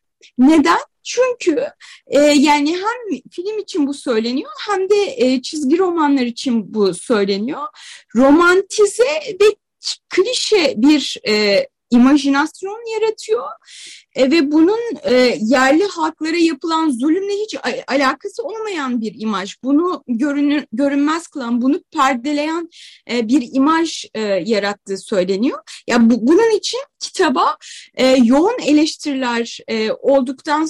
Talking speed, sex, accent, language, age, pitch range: 105 wpm, female, native, Turkish, 30-49, 255-370 Hz